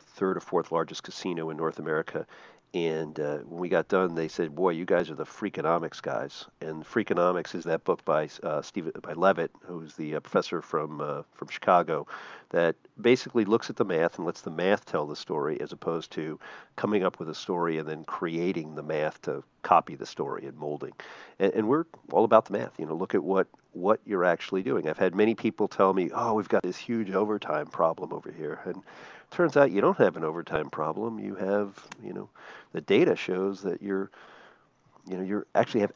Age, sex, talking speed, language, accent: 50-69, male, 210 wpm, English, American